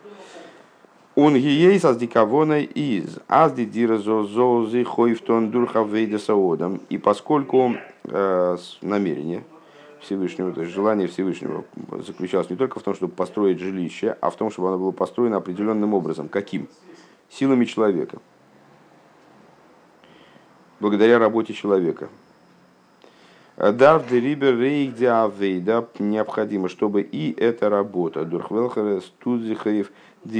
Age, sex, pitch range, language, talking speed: 50-69, male, 100-130 Hz, Russian, 85 wpm